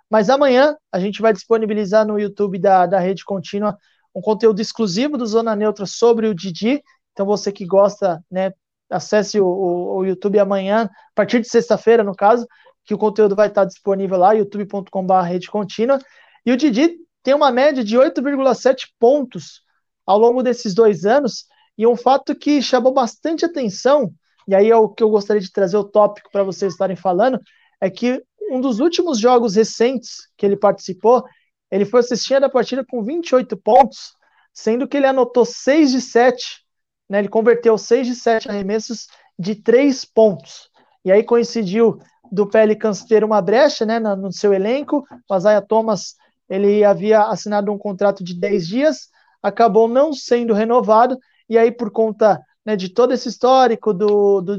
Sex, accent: male, Brazilian